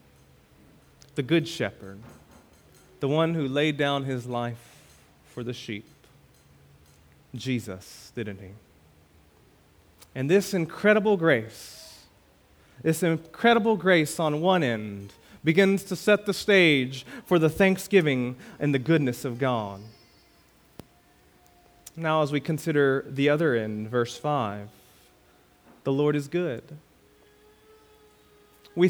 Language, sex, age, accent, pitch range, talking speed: English, male, 30-49, American, 120-205 Hz, 110 wpm